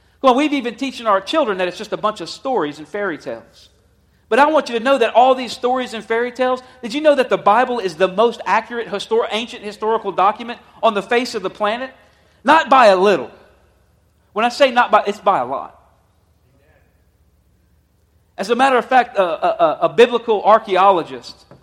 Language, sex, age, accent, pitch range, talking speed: English, male, 40-59, American, 175-230 Hz, 205 wpm